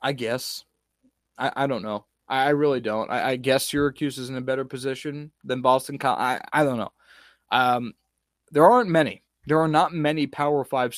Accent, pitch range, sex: American, 130-160 Hz, male